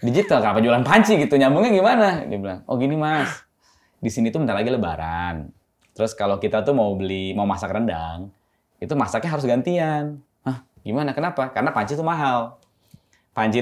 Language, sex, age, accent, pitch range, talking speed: Indonesian, male, 20-39, native, 100-140 Hz, 170 wpm